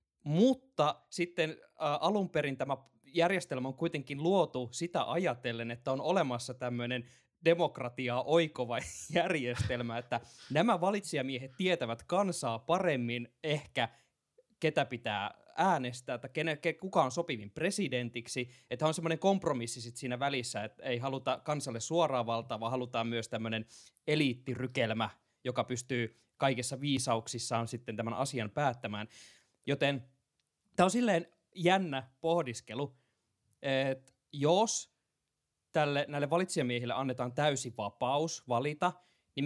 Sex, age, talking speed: male, 20-39, 115 wpm